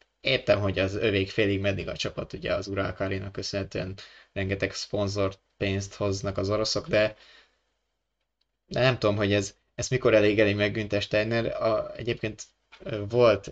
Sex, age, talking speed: male, 20-39, 140 wpm